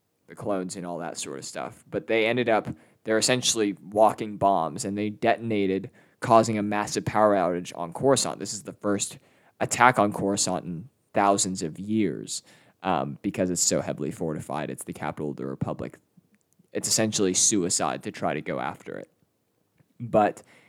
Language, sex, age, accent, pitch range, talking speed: English, male, 20-39, American, 90-110 Hz, 170 wpm